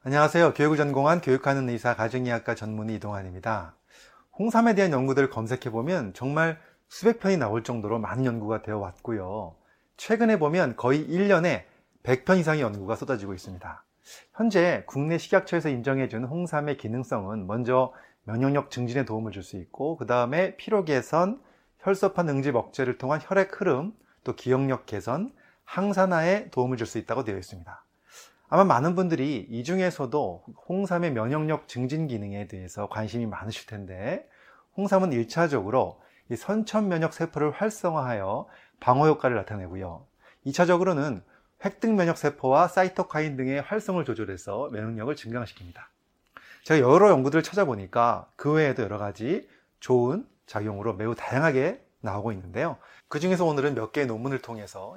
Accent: native